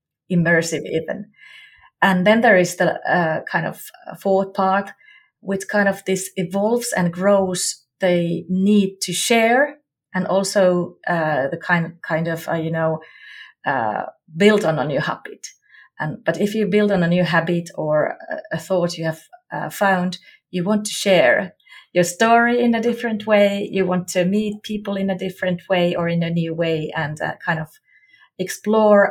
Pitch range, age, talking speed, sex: 170-220 Hz, 30-49, 175 wpm, female